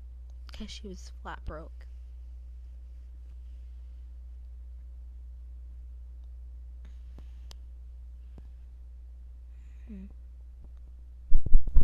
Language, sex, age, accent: English, female, 20-39, American